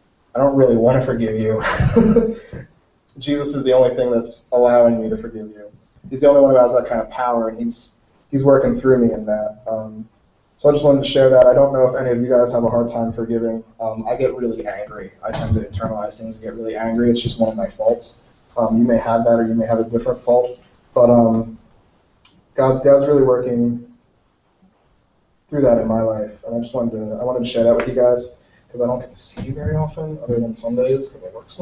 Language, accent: English, American